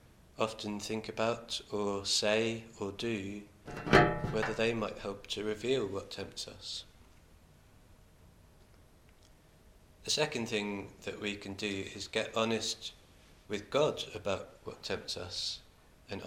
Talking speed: 120 wpm